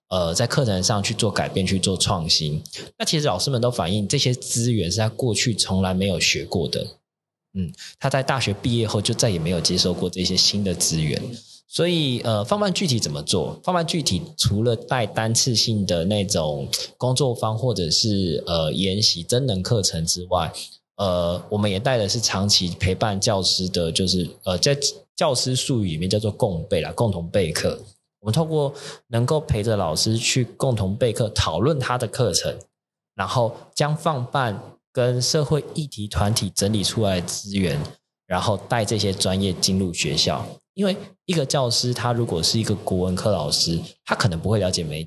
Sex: male